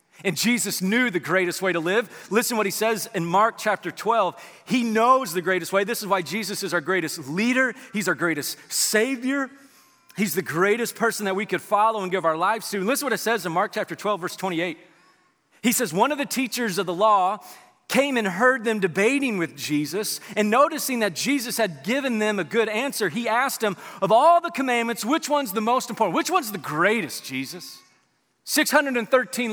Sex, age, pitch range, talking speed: male, 40-59, 175-240 Hz, 210 wpm